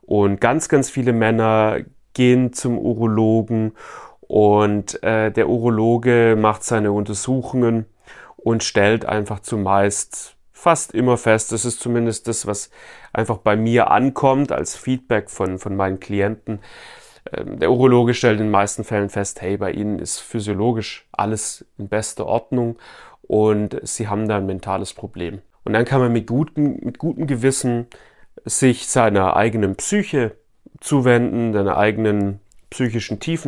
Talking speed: 145 wpm